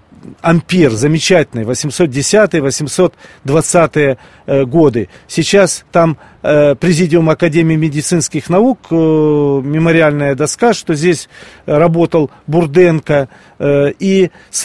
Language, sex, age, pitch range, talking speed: Russian, male, 40-59, 145-180 Hz, 85 wpm